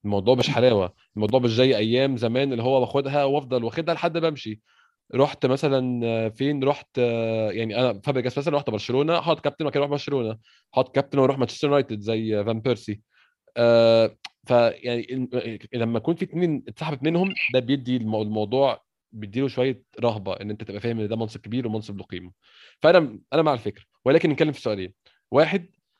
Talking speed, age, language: 165 wpm, 20-39, Arabic